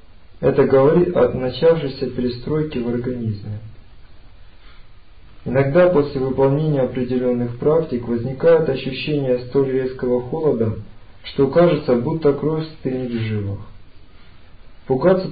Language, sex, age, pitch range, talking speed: Russian, male, 50-69, 110-135 Hz, 100 wpm